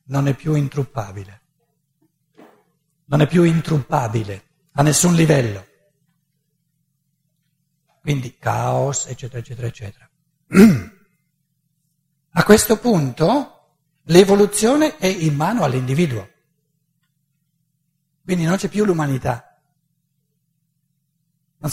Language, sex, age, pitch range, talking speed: Italian, male, 60-79, 150-180 Hz, 85 wpm